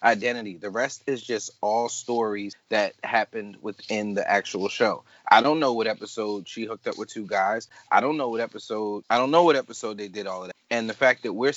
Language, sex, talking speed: English, male, 230 wpm